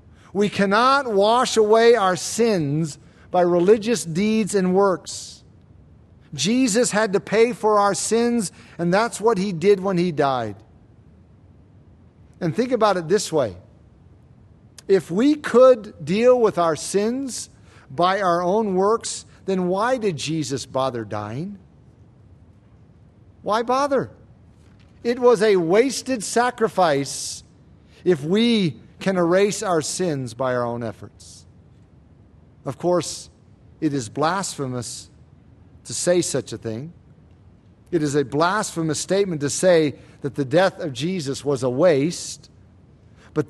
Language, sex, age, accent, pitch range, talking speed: English, male, 50-69, American, 140-220 Hz, 125 wpm